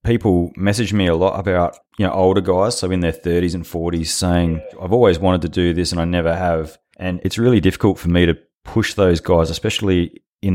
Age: 30-49